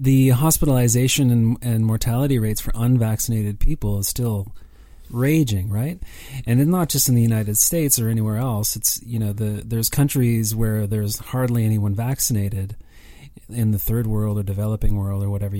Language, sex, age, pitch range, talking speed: English, male, 30-49, 100-125 Hz, 165 wpm